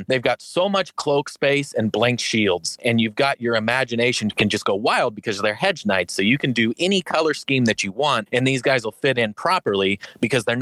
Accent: American